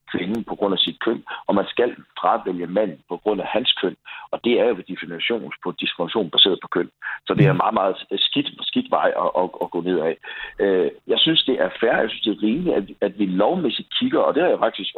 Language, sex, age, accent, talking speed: Danish, male, 60-79, native, 240 wpm